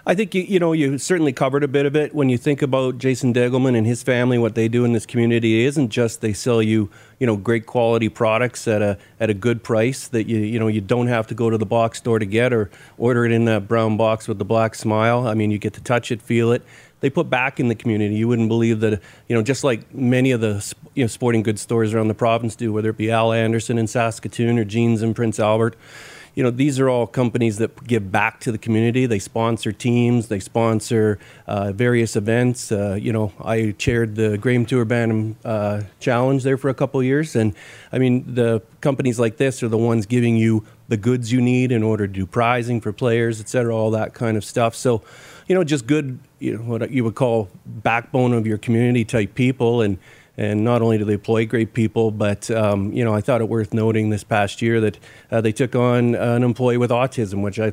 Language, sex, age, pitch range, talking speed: English, male, 40-59, 110-125 Hz, 240 wpm